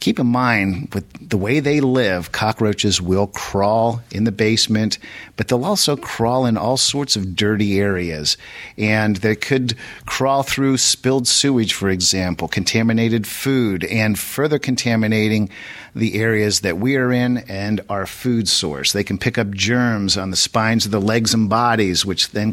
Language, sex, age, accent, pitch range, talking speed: English, male, 50-69, American, 100-125 Hz, 170 wpm